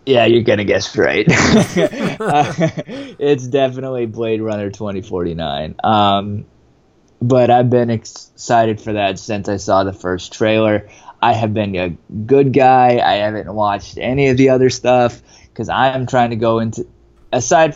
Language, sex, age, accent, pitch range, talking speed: English, male, 20-39, American, 105-125 Hz, 160 wpm